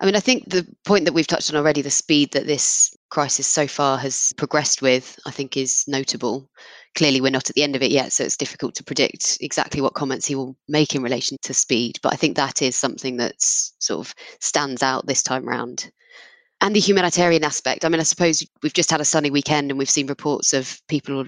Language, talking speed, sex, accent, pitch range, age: English, 235 wpm, female, British, 135-155 Hz, 20-39